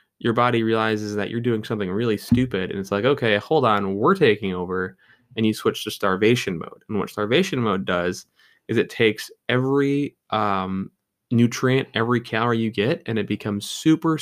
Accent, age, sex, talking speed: American, 20-39, male, 180 wpm